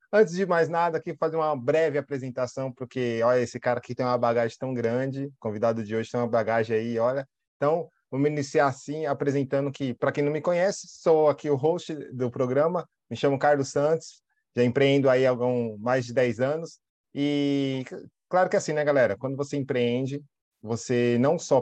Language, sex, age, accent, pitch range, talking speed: Portuguese, male, 20-39, Brazilian, 120-150 Hz, 195 wpm